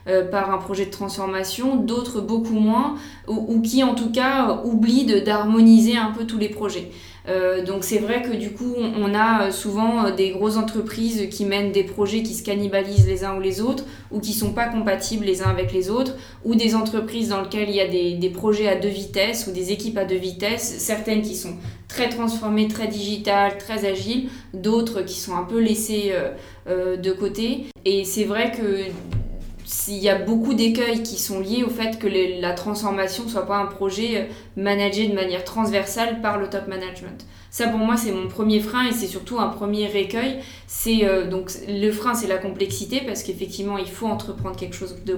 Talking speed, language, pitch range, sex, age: 205 wpm, French, 190-225 Hz, female, 20-39